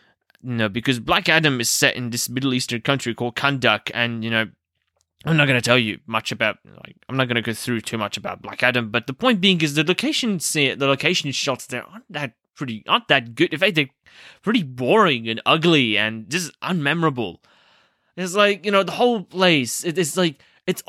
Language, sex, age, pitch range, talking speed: English, male, 20-39, 115-160 Hz, 215 wpm